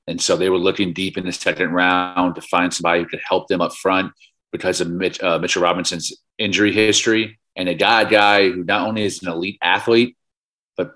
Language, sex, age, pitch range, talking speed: English, male, 30-49, 85-105 Hz, 215 wpm